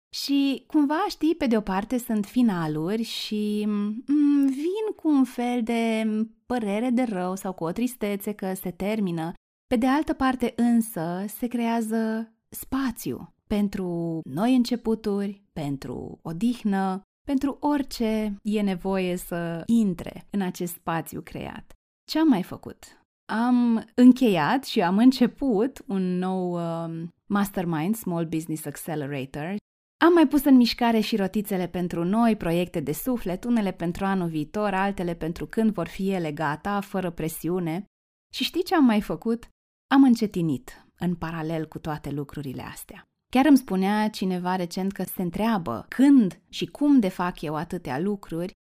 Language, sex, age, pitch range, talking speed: Romanian, female, 20-39, 175-240 Hz, 145 wpm